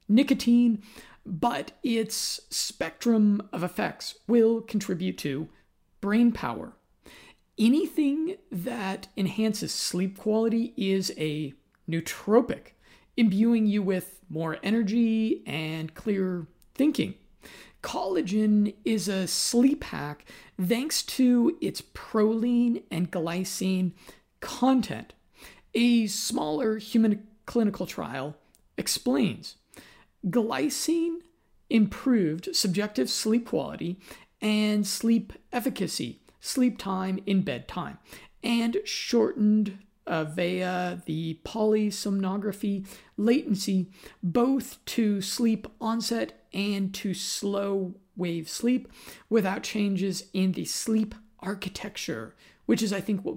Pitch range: 185-230 Hz